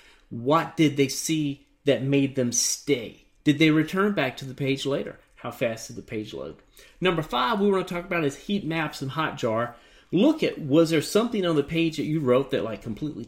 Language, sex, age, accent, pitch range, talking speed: English, male, 40-59, American, 130-185 Hz, 220 wpm